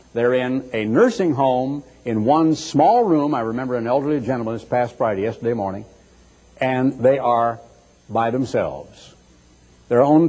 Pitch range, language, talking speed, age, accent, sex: 125-200 Hz, English, 150 wpm, 70-89, American, male